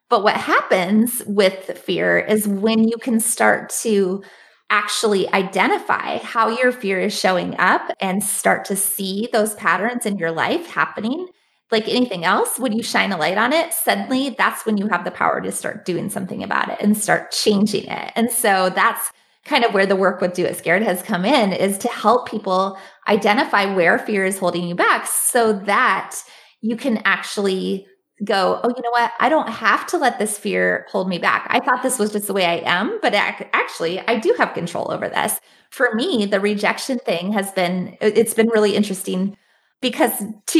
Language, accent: English, American